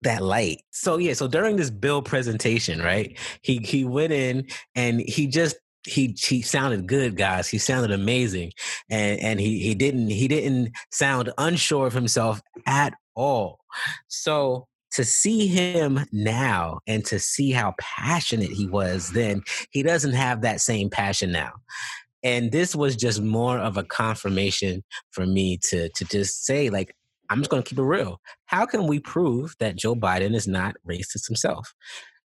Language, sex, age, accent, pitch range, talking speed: English, male, 20-39, American, 110-145 Hz, 165 wpm